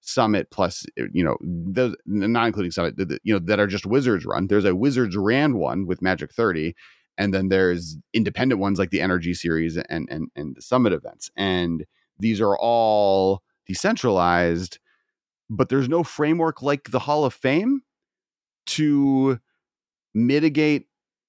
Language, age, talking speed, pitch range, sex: English, 30-49, 150 wpm, 90-125 Hz, male